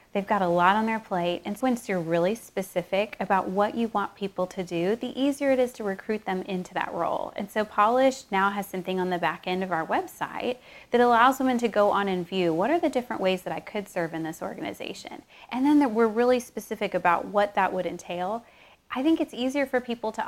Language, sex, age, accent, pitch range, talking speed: English, female, 20-39, American, 185-235 Hz, 235 wpm